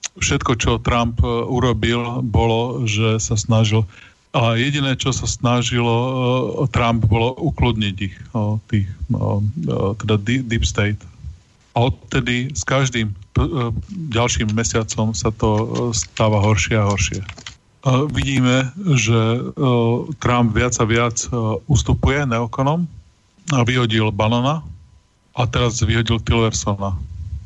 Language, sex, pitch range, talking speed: Slovak, male, 110-125 Hz, 105 wpm